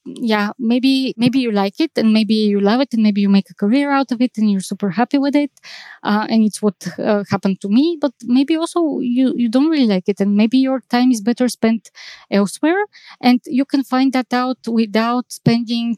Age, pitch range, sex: 20-39, 200-245 Hz, female